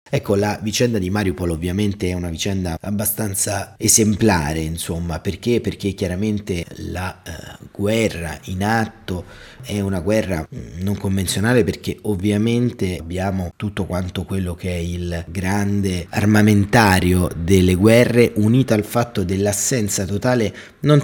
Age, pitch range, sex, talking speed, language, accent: 30-49, 90-110 Hz, male, 130 wpm, Italian, native